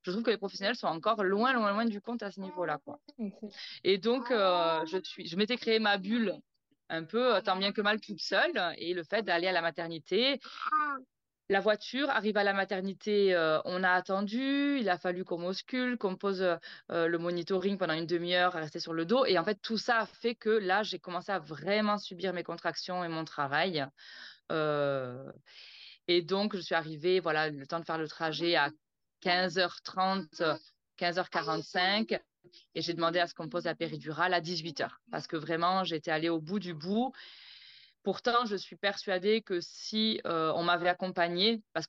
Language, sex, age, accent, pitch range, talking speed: French, female, 20-39, French, 165-210 Hz, 195 wpm